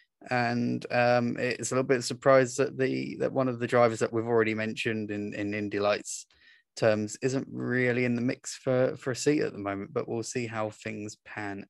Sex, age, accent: male, 20-39, British